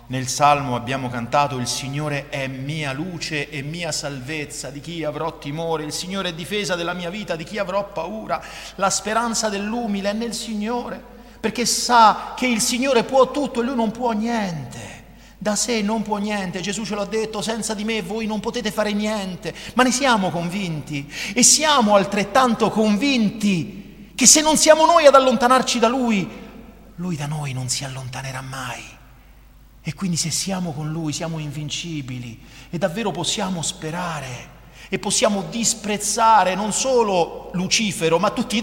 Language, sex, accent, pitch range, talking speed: Italian, male, native, 160-235 Hz, 165 wpm